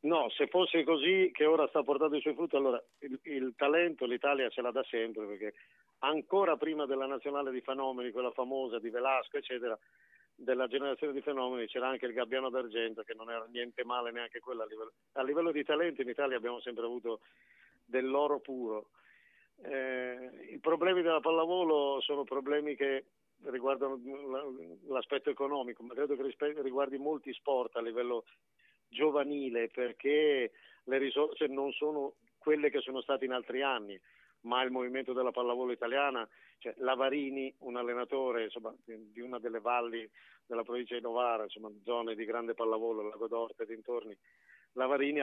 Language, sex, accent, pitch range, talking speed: Italian, male, native, 120-145 Hz, 160 wpm